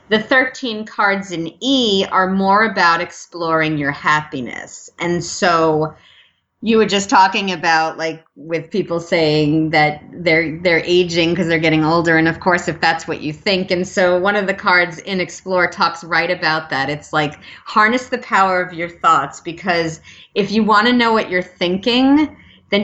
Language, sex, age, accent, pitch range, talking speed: English, female, 30-49, American, 165-200 Hz, 180 wpm